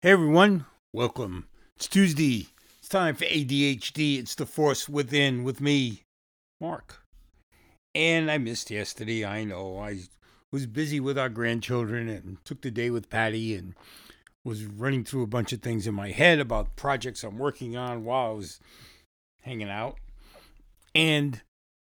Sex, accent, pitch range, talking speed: male, American, 105-145 Hz, 155 wpm